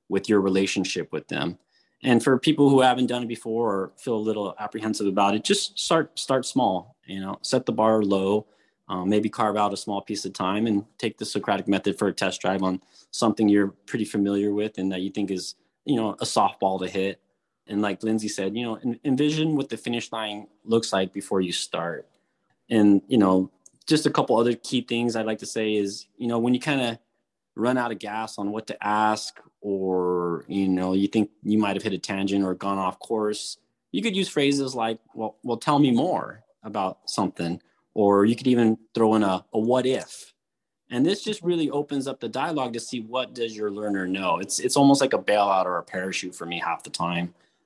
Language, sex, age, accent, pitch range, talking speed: English, male, 20-39, American, 100-125 Hz, 220 wpm